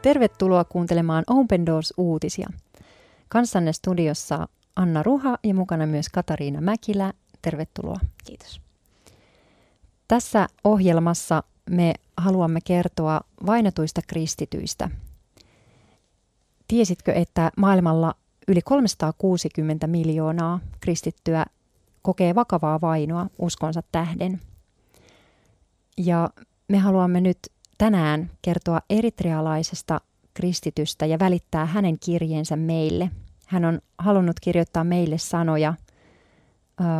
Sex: female